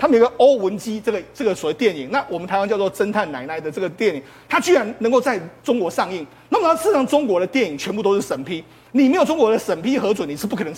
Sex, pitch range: male, 200-275 Hz